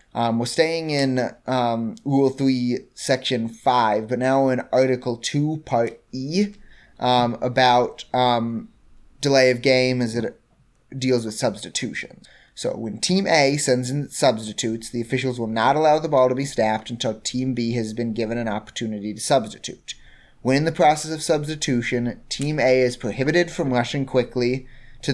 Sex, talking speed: male, 165 wpm